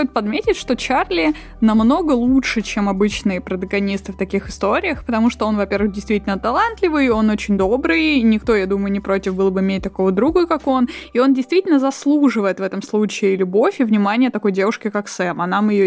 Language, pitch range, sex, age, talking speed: Russian, 195-270 Hz, female, 20-39, 190 wpm